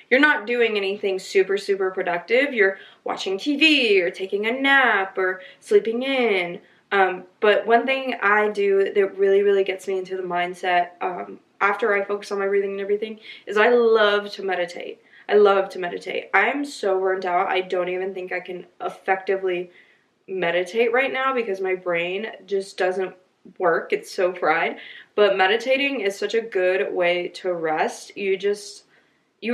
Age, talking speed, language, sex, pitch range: 20-39, 170 wpm, English, female, 180-235 Hz